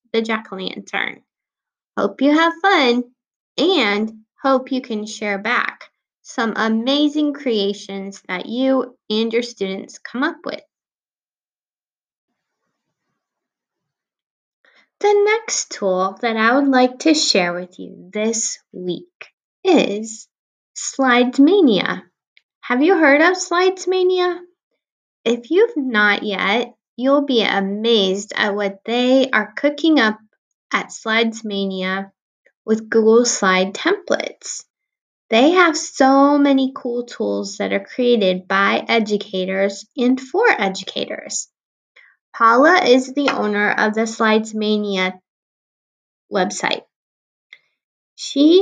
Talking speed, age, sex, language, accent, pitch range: 110 wpm, 10-29, female, English, American, 205-275 Hz